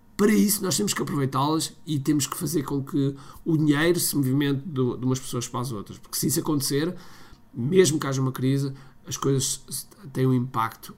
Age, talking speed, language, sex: 50-69, 195 wpm, Portuguese, male